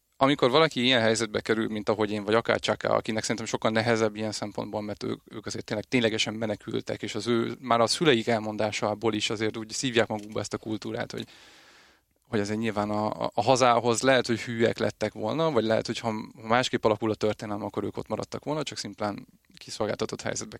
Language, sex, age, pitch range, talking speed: Hungarian, male, 20-39, 110-130 Hz, 195 wpm